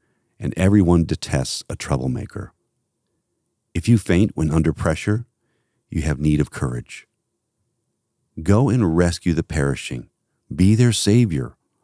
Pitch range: 75-95 Hz